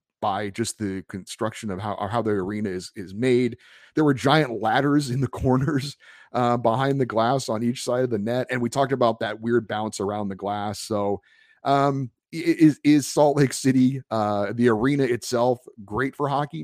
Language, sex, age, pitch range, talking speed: English, male, 30-49, 105-140 Hz, 190 wpm